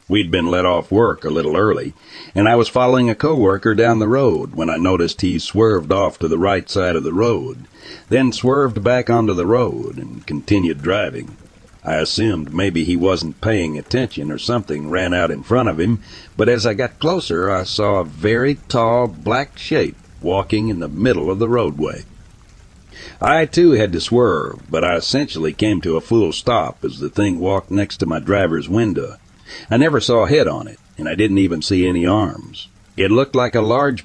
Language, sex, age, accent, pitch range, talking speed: English, male, 60-79, American, 85-115 Hz, 200 wpm